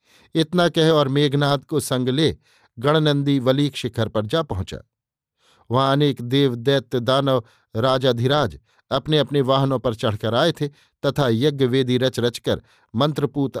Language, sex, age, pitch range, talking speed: Hindi, male, 50-69, 125-145 Hz, 130 wpm